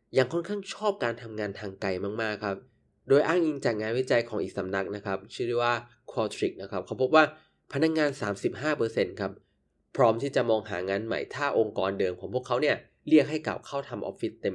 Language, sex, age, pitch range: Thai, male, 20-39, 105-130 Hz